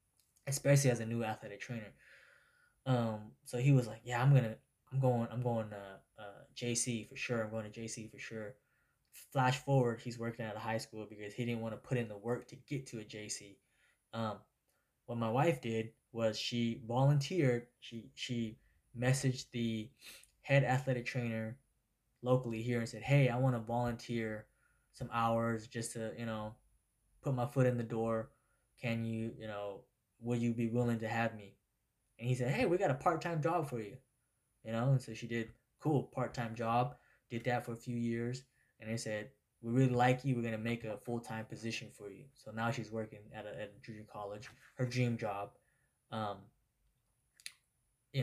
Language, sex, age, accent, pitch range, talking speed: English, male, 10-29, American, 115-130 Hz, 195 wpm